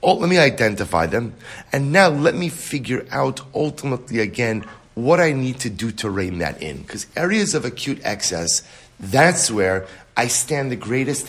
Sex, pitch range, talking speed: male, 115-150 Hz, 175 wpm